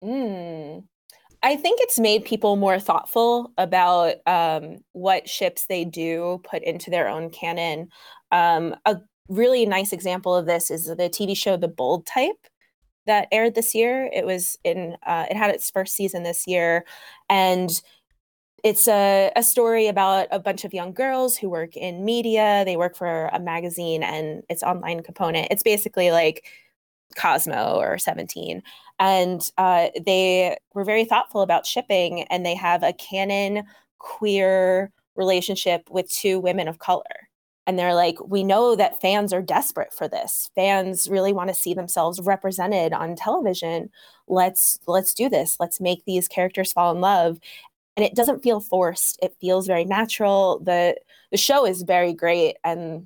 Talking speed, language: 165 wpm, English